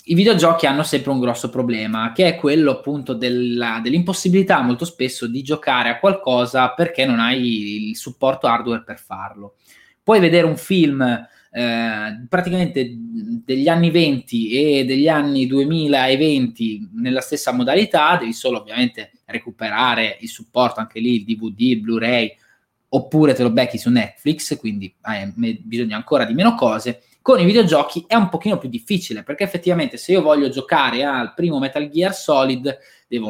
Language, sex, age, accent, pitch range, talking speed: Italian, male, 20-39, native, 115-165 Hz, 155 wpm